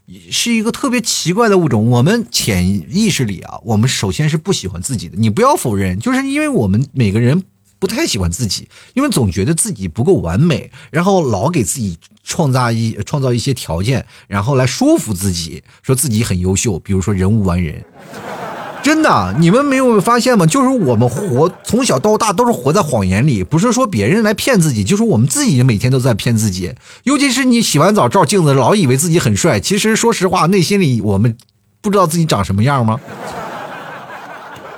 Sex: male